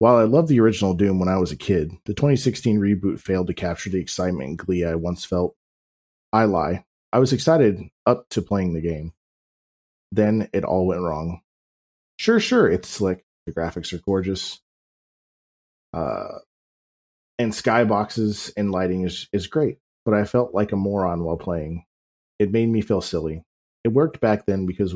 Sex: male